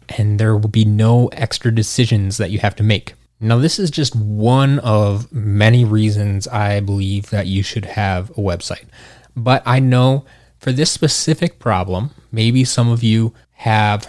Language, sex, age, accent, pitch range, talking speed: English, male, 20-39, American, 105-125 Hz, 170 wpm